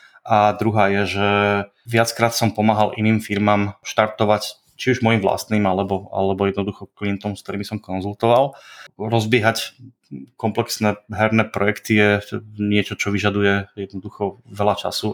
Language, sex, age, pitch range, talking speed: Czech, male, 20-39, 100-110 Hz, 130 wpm